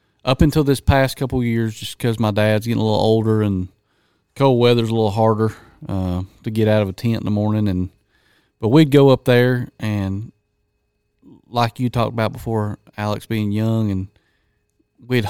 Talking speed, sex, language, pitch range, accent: 190 wpm, male, English, 105-120 Hz, American